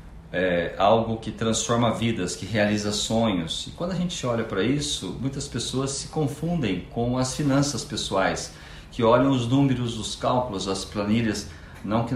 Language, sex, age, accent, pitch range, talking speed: Portuguese, male, 50-69, Brazilian, 100-130 Hz, 165 wpm